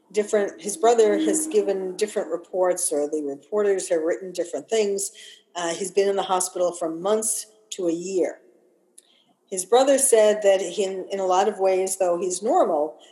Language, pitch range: English, 170-225 Hz